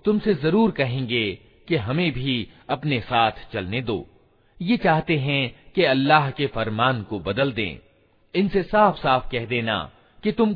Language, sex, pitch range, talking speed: Hindi, male, 115-170 Hz, 155 wpm